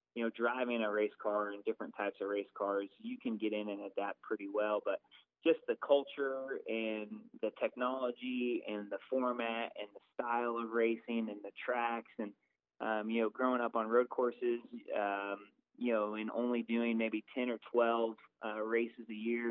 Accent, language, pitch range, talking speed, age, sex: American, English, 105-120 Hz, 190 wpm, 20-39, male